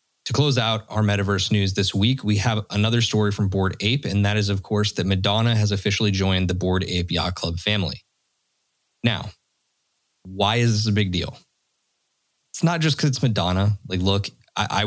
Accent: American